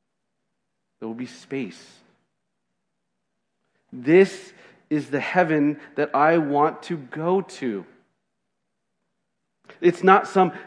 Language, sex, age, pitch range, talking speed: English, male, 40-59, 145-205 Hz, 95 wpm